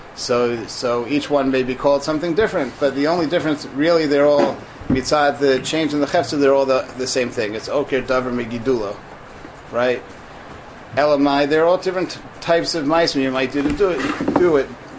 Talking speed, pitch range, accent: 195 wpm, 125-150 Hz, American